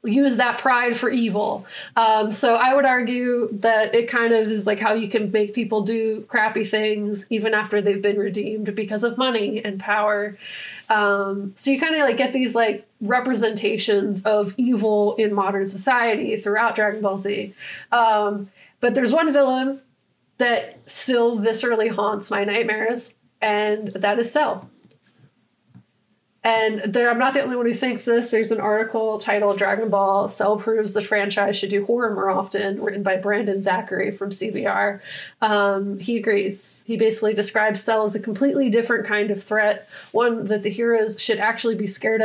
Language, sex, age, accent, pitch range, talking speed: English, female, 20-39, American, 205-230 Hz, 170 wpm